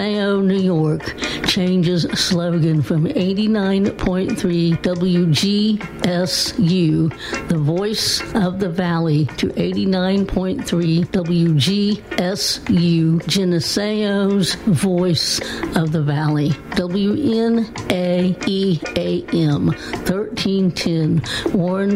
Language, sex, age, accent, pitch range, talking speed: English, female, 60-79, American, 165-195 Hz, 65 wpm